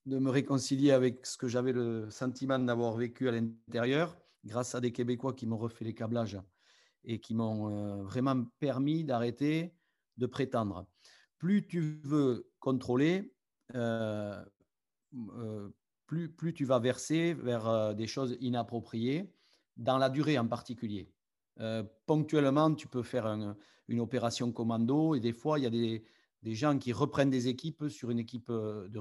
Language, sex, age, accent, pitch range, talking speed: French, male, 40-59, French, 115-145 Hz, 155 wpm